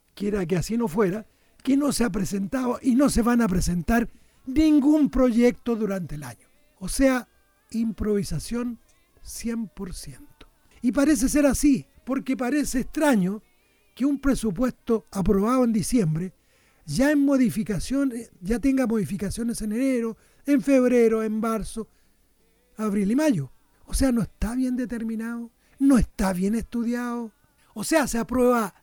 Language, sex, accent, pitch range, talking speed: Spanish, male, Argentinian, 220-270 Hz, 135 wpm